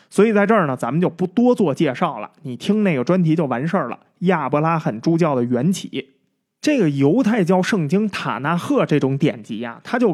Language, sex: Chinese, male